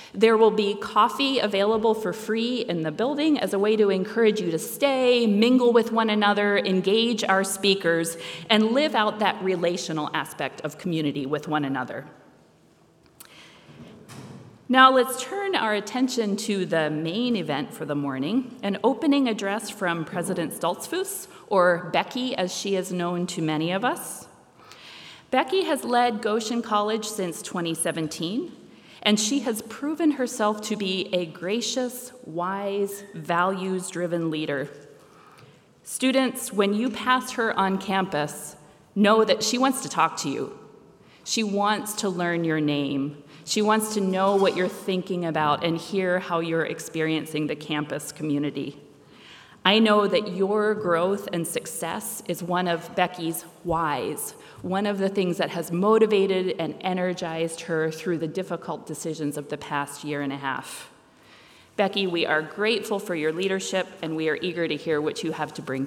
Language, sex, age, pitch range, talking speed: English, female, 40-59, 165-220 Hz, 155 wpm